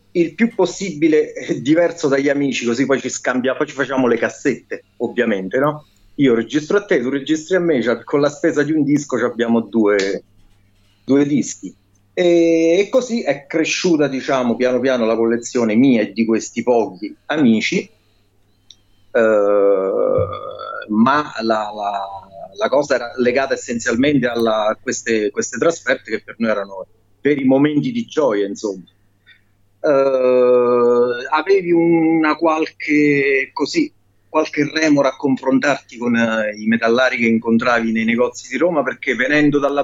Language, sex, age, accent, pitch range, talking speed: Italian, male, 40-59, native, 110-155 Hz, 135 wpm